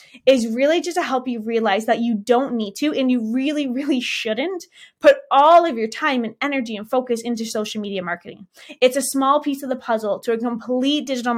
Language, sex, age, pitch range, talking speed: English, female, 20-39, 230-290 Hz, 215 wpm